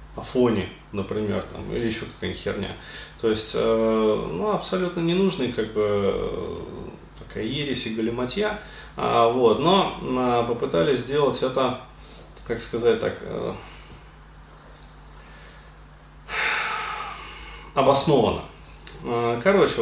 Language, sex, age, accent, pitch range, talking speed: Russian, male, 20-39, native, 110-145 Hz, 90 wpm